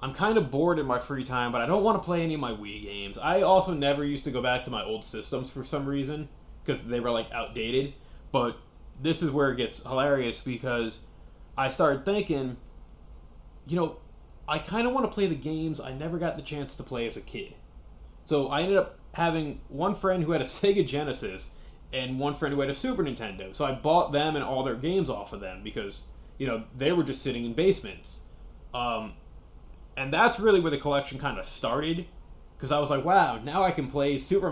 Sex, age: male, 20-39